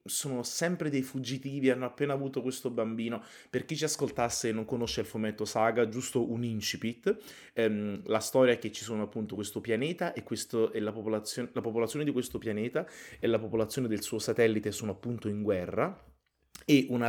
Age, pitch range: 30-49, 105-130 Hz